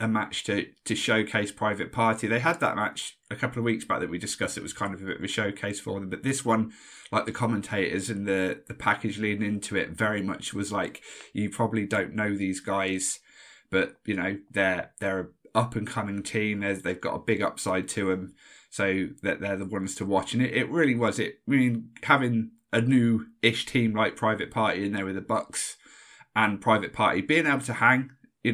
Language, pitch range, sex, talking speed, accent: English, 100-115 Hz, male, 225 wpm, British